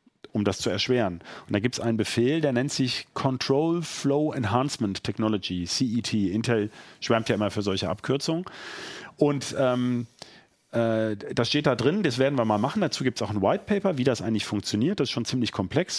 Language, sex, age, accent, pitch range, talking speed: German, male, 40-59, German, 115-150 Hz, 200 wpm